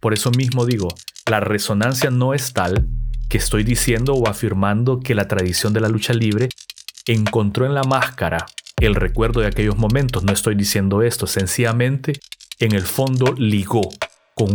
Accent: Mexican